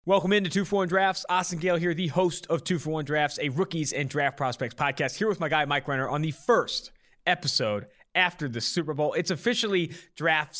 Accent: American